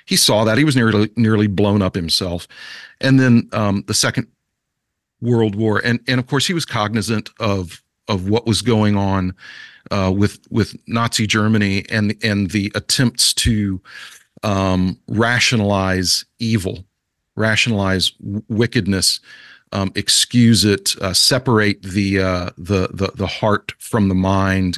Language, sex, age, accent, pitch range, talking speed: English, male, 40-59, American, 100-125 Hz, 145 wpm